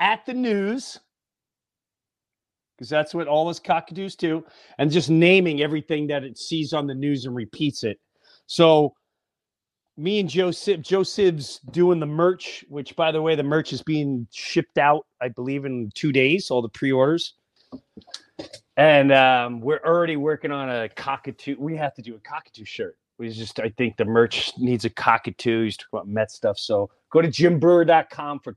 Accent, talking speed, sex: American, 180 wpm, male